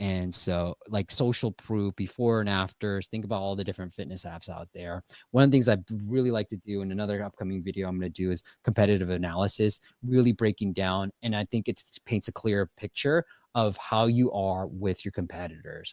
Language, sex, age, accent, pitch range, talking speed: English, male, 20-39, American, 95-115 Hz, 205 wpm